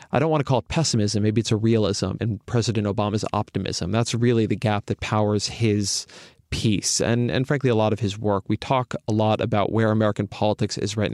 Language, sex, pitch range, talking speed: English, male, 100-120 Hz, 220 wpm